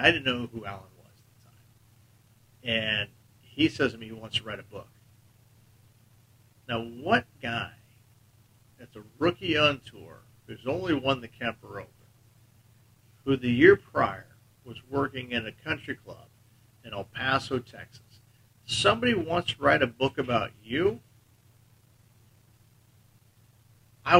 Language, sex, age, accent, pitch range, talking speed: English, male, 50-69, American, 115-125 Hz, 140 wpm